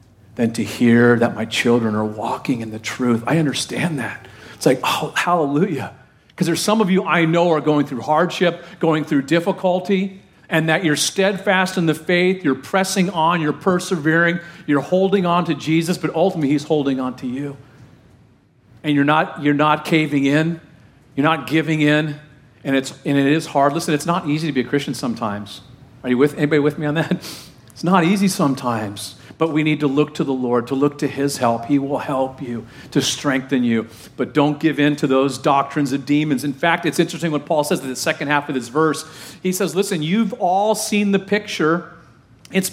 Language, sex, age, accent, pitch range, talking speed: English, male, 40-59, American, 140-180 Hz, 205 wpm